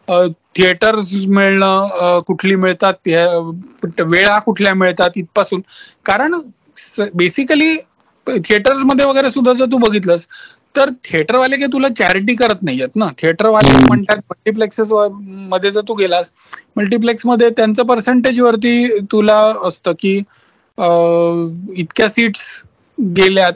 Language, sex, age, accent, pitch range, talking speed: Marathi, male, 30-49, native, 190-245 Hz, 105 wpm